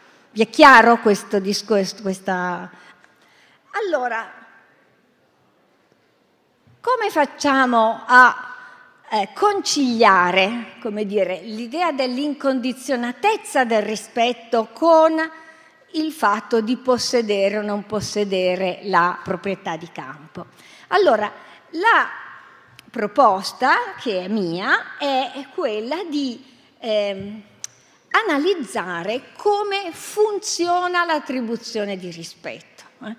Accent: native